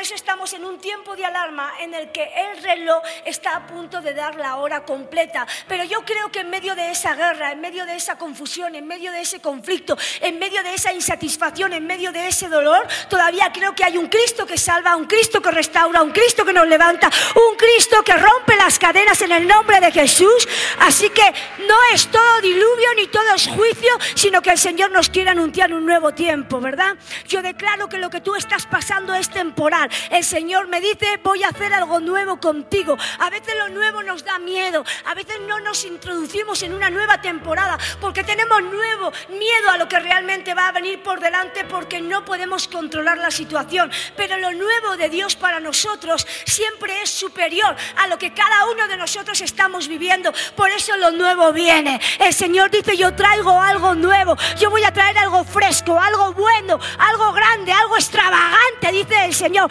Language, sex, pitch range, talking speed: Spanish, female, 340-405 Hz, 200 wpm